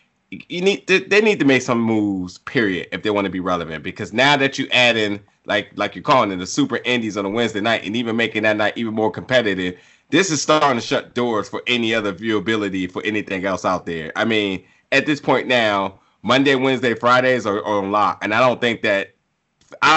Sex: male